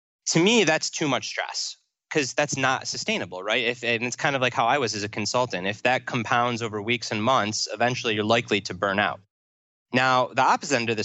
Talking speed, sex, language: 225 wpm, male, English